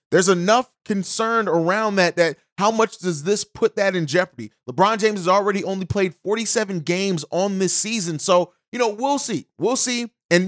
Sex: male